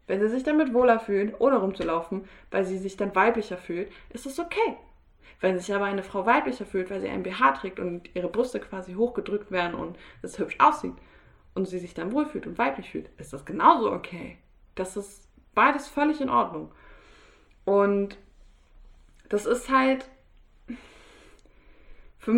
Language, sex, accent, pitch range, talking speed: German, female, German, 195-250 Hz, 165 wpm